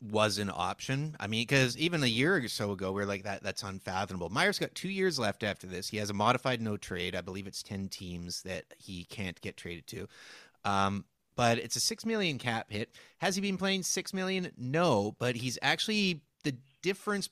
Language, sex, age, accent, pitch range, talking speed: English, male, 30-49, American, 100-125 Hz, 210 wpm